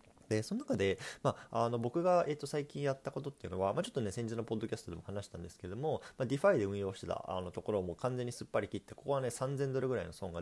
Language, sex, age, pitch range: Japanese, male, 20-39, 90-135 Hz